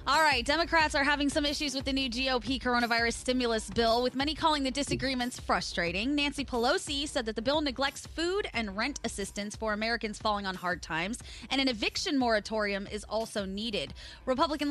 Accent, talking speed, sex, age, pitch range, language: American, 185 wpm, female, 20-39, 200-290 Hz, English